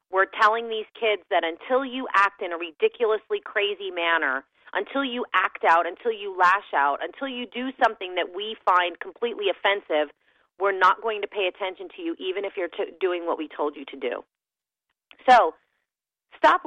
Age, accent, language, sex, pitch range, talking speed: 30-49, American, English, female, 160-245 Hz, 180 wpm